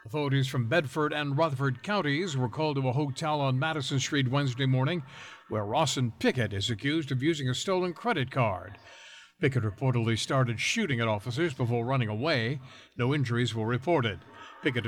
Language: English